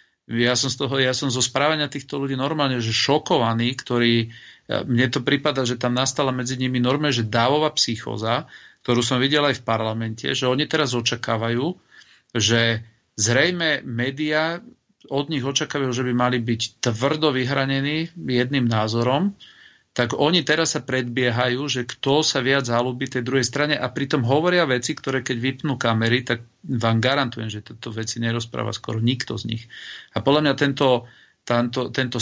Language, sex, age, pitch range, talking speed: Slovak, male, 40-59, 115-135 Hz, 160 wpm